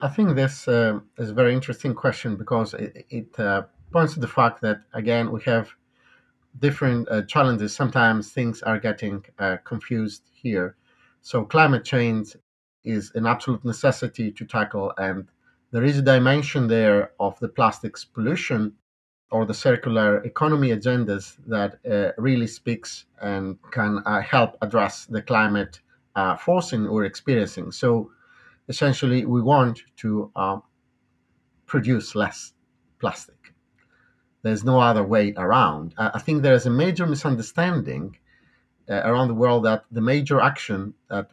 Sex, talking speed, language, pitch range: male, 145 wpm, English, 105-130 Hz